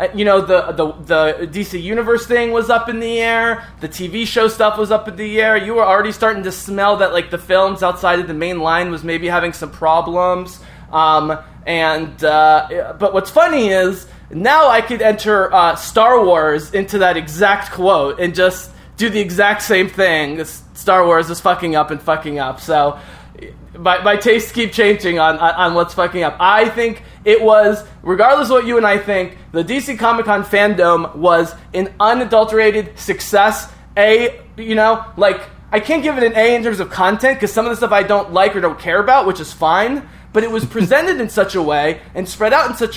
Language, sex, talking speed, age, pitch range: English, male, 205 wpm, 20-39, 175-230 Hz